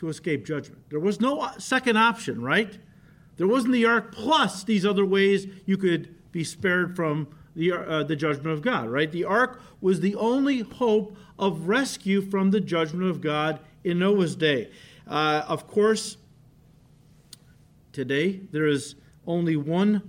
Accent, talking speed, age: American, 160 wpm, 50-69